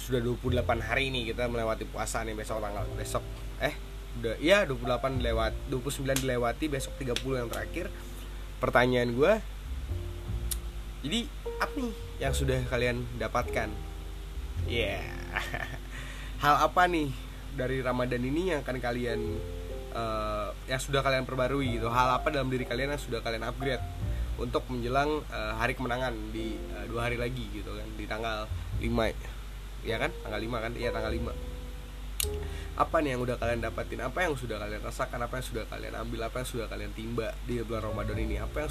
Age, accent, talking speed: 20-39, native, 165 wpm